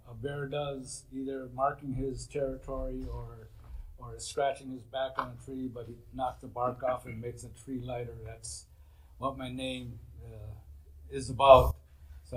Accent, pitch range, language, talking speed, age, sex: American, 90-135 Hz, English, 165 wpm, 50-69, male